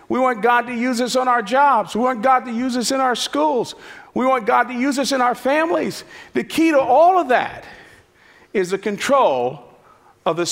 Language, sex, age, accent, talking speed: English, male, 50-69, American, 215 wpm